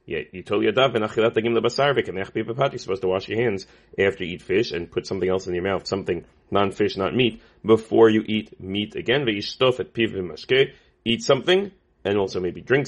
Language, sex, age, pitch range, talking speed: English, male, 30-49, 95-125 Hz, 150 wpm